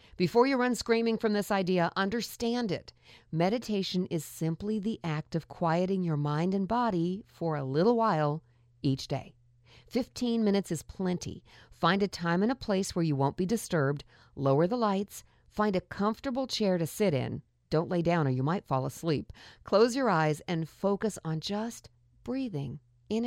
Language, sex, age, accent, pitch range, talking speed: English, female, 50-69, American, 145-205 Hz, 175 wpm